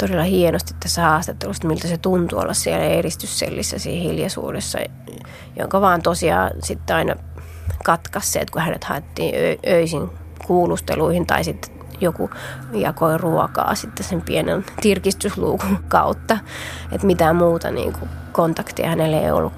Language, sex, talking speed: Finnish, female, 130 wpm